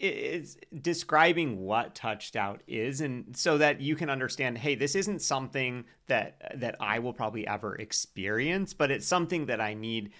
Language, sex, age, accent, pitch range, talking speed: English, male, 40-59, American, 105-145 Hz, 170 wpm